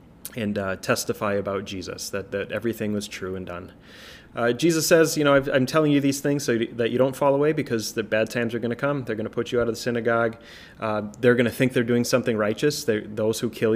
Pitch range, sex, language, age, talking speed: 105-125 Hz, male, English, 30-49, 255 wpm